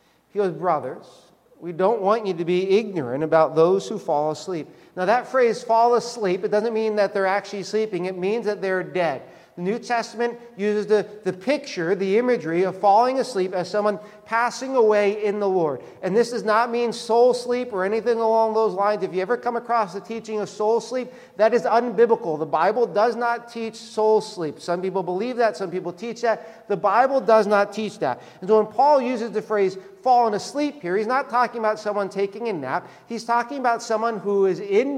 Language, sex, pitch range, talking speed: English, male, 185-235 Hz, 210 wpm